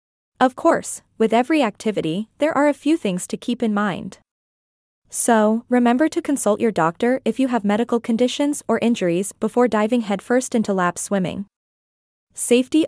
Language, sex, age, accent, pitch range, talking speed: English, female, 20-39, American, 200-250 Hz, 160 wpm